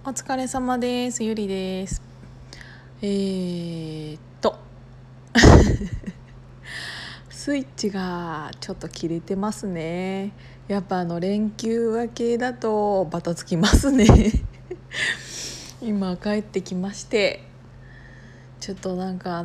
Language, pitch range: Japanese, 180-245 Hz